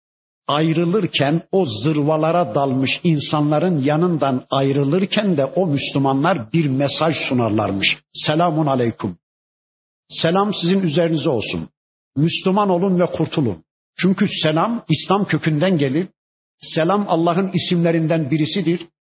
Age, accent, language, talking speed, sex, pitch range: 50-69, native, Turkish, 100 wpm, male, 145-190 Hz